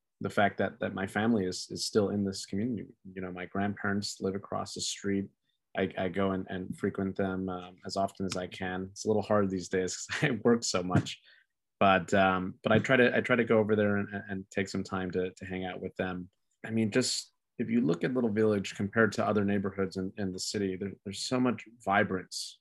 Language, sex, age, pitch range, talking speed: English, male, 20-39, 95-105 Hz, 235 wpm